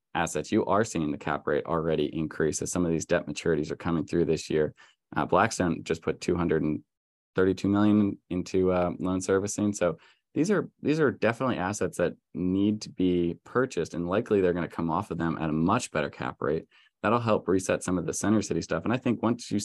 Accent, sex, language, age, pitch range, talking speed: American, male, English, 20-39, 80-95 Hz, 225 wpm